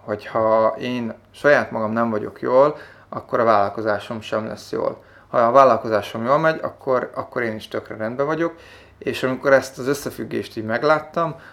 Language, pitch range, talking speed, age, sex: Hungarian, 110-130 Hz, 170 wpm, 30-49, male